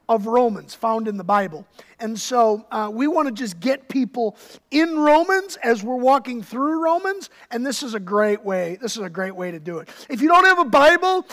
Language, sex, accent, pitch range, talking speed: English, male, American, 205-260 Hz, 220 wpm